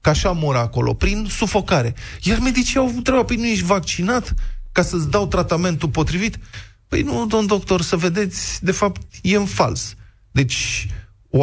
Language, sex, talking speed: Romanian, male, 175 wpm